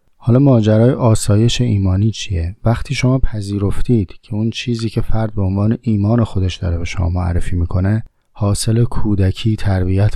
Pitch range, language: 90-115 Hz, Persian